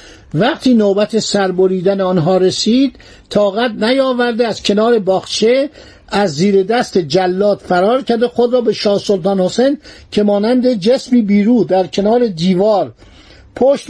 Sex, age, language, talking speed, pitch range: male, 60-79, Persian, 130 wpm, 175-235 Hz